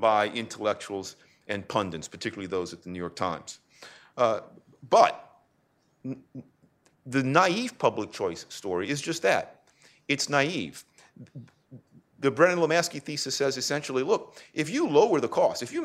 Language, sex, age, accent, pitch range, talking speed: English, male, 40-59, American, 110-145 Hz, 140 wpm